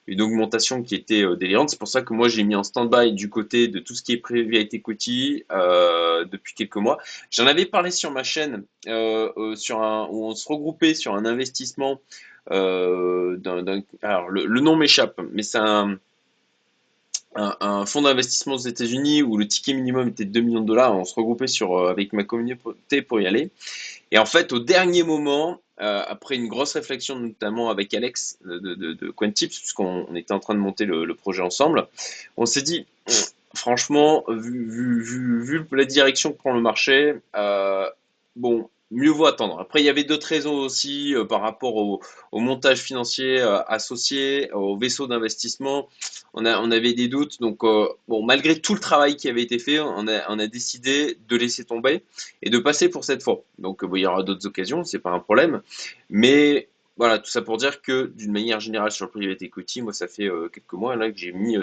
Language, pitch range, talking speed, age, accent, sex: French, 105-135 Hz, 205 wpm, 20-39, French, male